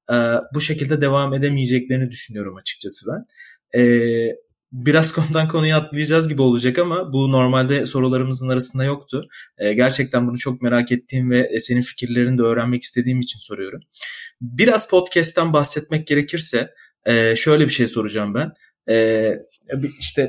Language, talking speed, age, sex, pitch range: Turkish, 140 wpm, 30-49, male, 120-150 Hz